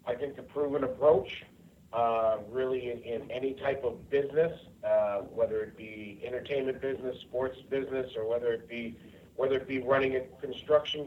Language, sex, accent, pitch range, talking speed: English, male, American, 120-140 Hz, 170 wpm